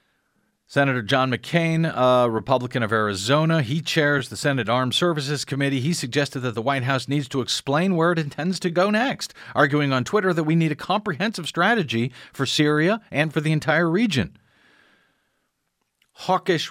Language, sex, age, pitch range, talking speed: English, male, 50-69, 125-170 Hz, 165 wpm